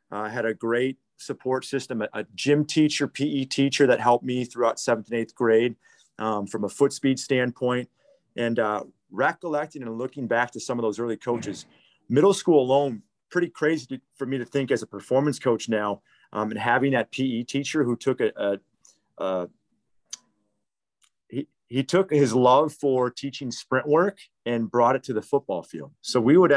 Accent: American